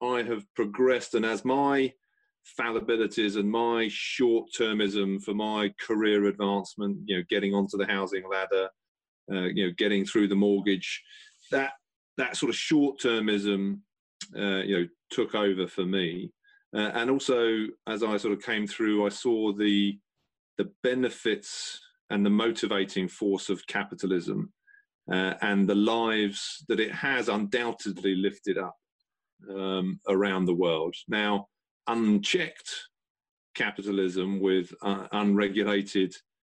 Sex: male